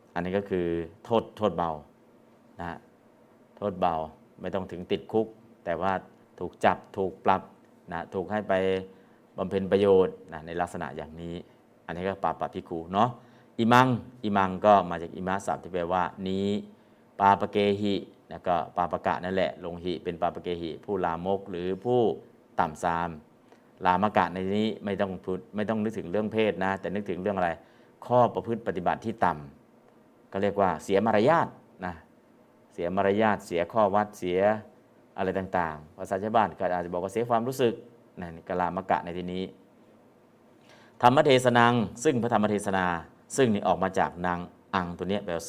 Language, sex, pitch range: Thai, male, 90-105 Hz